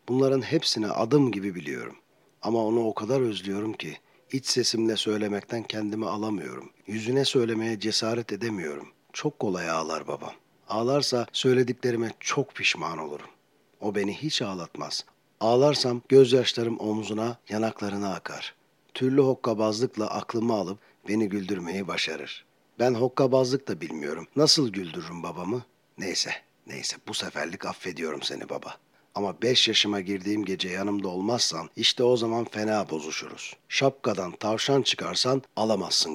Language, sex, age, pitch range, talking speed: Turkish, male, 50-69, 105-130 Hz, 125 wpm